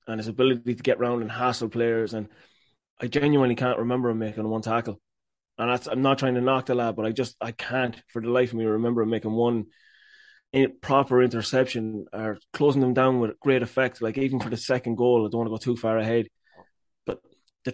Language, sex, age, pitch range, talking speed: English, male, 20-39, 115-135 Hz, 220 wpm